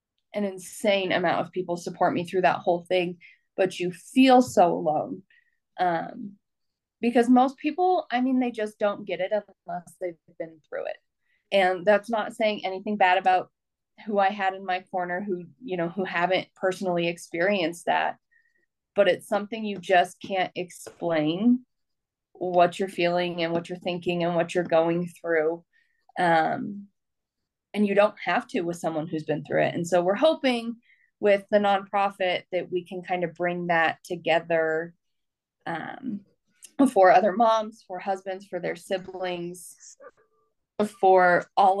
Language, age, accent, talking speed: English, 30-49, American, 160 wpm